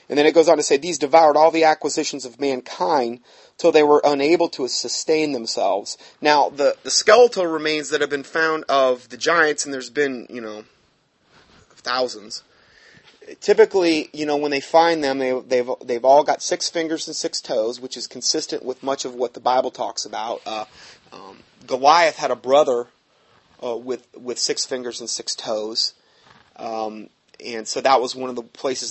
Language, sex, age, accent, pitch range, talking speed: English, male, 30-49, American, 125-155 Hz, 185 wpm